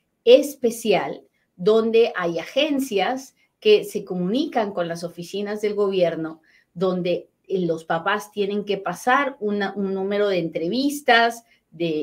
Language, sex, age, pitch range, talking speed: Spanish, female, 40-59, 180-235 Hz, 115 wpm